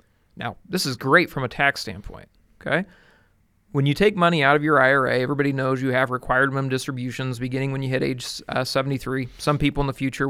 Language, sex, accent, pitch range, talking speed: English, male, American, 130-145 Hz, 210 wpm